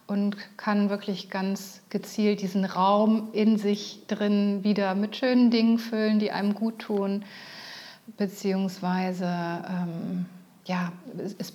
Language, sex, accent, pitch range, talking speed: German, female, German, 185-225 Hz, 120 wpm